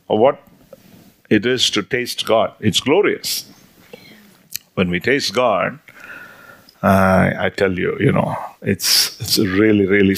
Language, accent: Danish, Indian